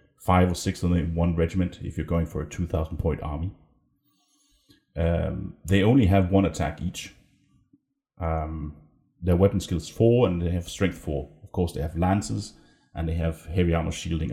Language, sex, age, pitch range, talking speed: English, male, 30-49, 85-100 Hz, 180 wpm